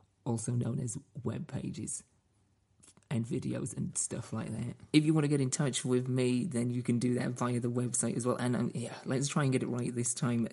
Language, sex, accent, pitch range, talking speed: English, male, British, 120-135 Hz, 230 wpm